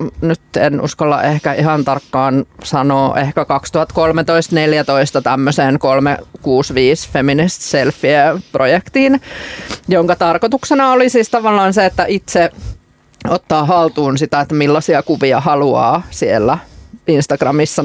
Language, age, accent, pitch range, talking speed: Finnish, 20-39, native, 135-170 Hz, 100 wpm